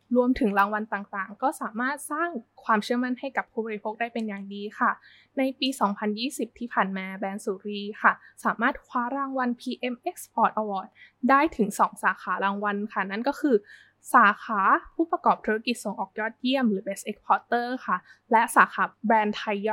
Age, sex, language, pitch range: 20-39, female, Thai, 210-255 Hz